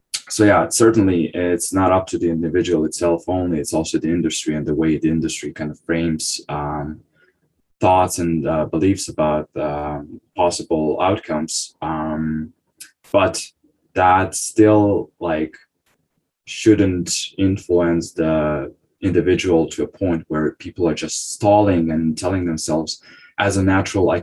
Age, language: 20-39, English